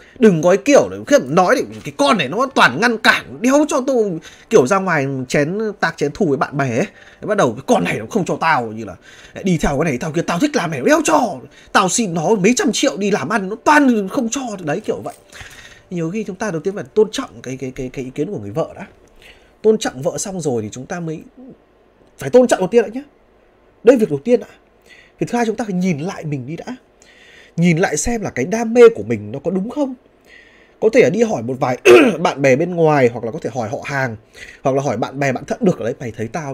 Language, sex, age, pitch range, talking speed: Vietnamese, male, 20-39, 150-245 Hz, 260 wpm